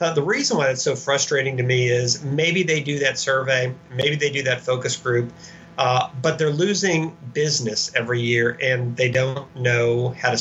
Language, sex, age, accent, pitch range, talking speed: English, male, 40-59, American, 125-145 Hz, 195 wpm